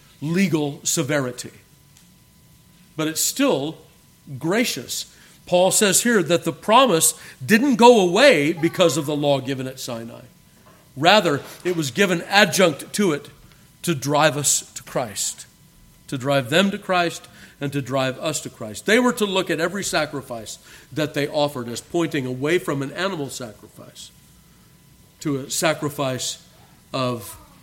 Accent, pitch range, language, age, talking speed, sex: American, 140-180 Hz, English, 50-69, 145 wpm, male